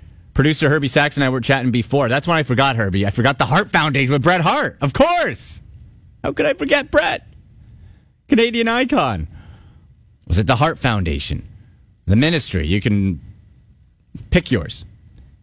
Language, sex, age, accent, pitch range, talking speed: English, male, 30-49, American, 105-140 Hz, 160 wpm